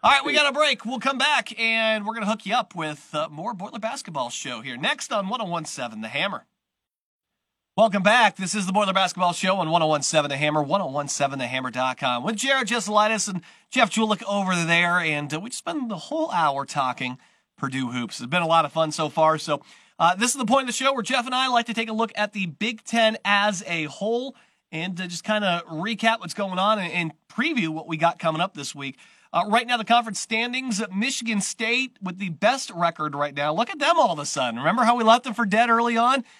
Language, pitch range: English, 155-225 Hz